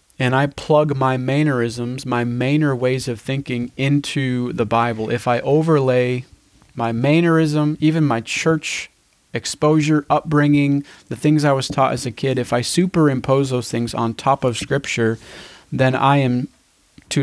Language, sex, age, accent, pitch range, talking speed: English, male, 30-49, American, 120-140 Hz, 155 wpm